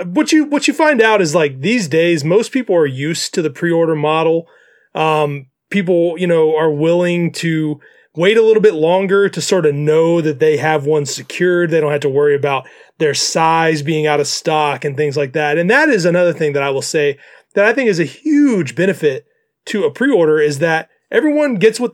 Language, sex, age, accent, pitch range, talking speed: English, male, 30-49, American, 155-205 Hz, 215 wpm